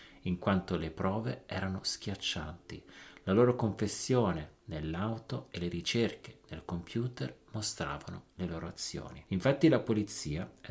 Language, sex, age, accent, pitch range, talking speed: Italian, male, 40-59, native, 85-110 Hz, 130 wpm